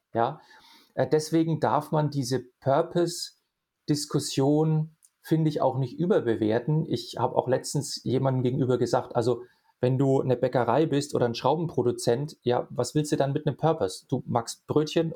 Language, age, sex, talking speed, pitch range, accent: German, 40-59, male, 150 wpm, 125-160 Hz, German